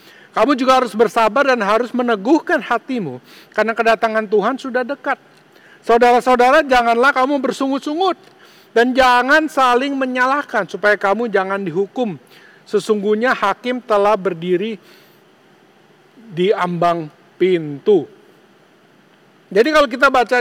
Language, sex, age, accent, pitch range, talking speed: English, male, 50-69, Indonesian, 185-250 Hz, 105 wpm